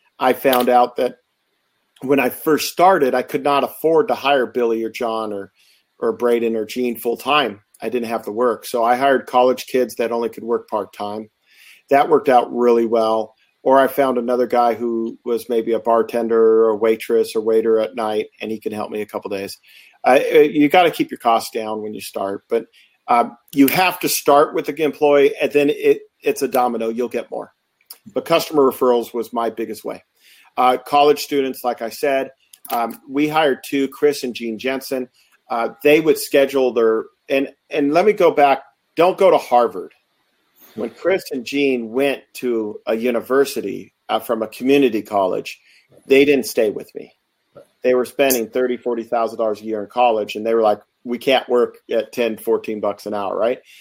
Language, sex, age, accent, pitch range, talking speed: English, male, 40-59, American, 115-140 Hz, 200 wpm